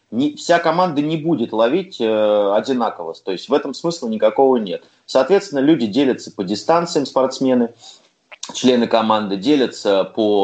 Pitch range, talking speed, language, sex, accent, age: 110-165 Hz, 140 wpm, Russian, male, native, 30-49